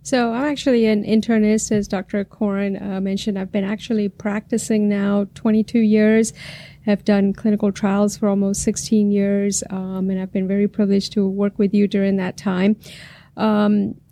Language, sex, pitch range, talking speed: English, female, 190-210 Hz, 165 wpm